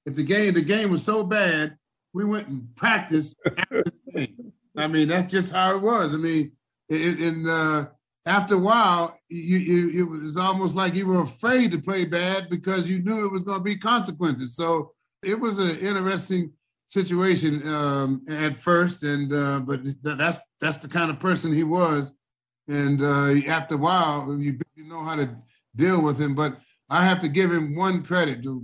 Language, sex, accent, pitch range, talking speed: English, male, American, 145-180 Hz, 195 wpm